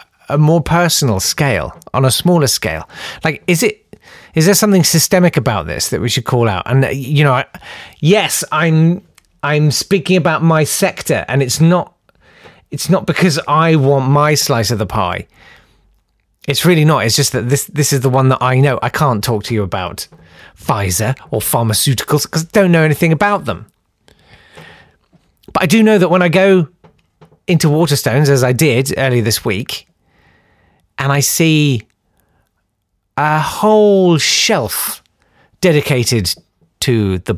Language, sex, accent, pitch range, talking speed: English, male, British, 115-175 Hz, 160 wpm